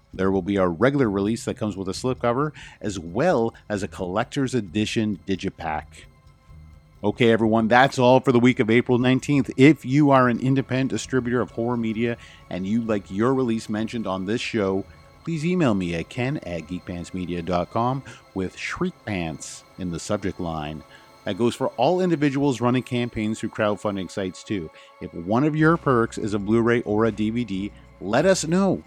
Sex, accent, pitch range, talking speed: male, American, 95-130 Hz, 180 wpm